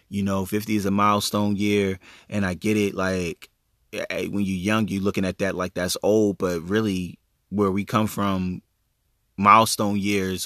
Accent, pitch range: American, 95-110 Hz